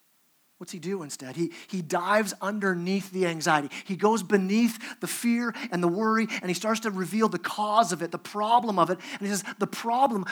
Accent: American